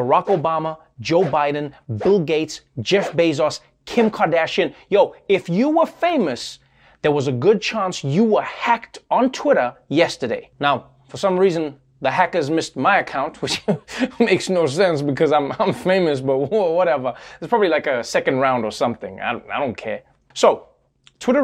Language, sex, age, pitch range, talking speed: English, male, 20-39, 145-210 Hz, 165 wpm